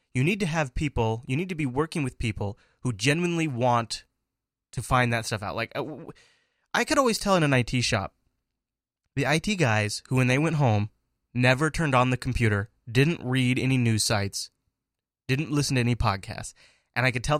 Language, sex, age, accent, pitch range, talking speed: English, male, 20-39, American, 115-145 Hz, 195 wpm